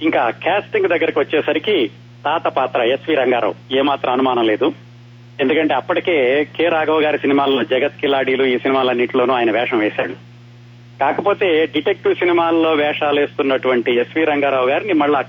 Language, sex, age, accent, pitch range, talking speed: Telugu, male, 30-49, native, 120-165 Hz, 125 wpm